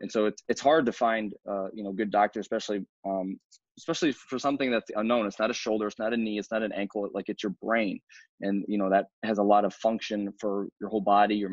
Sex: male